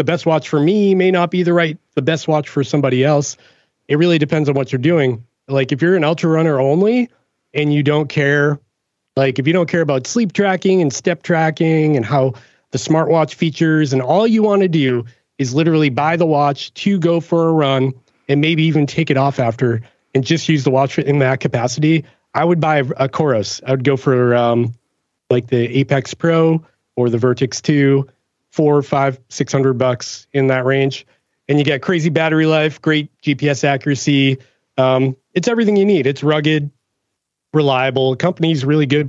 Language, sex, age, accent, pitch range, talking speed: English, male, 30-49, American, 130-160 Hz, 200 wpm